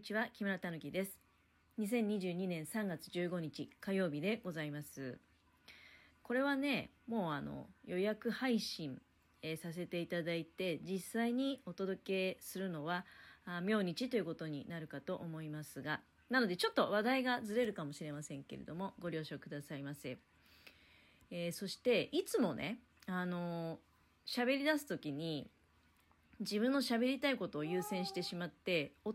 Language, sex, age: Japanese, female, 30-49